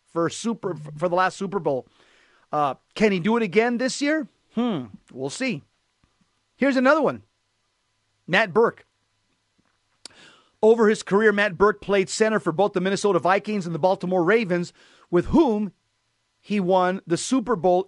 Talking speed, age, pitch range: 155 wpm, 40-59, 170-210 Hz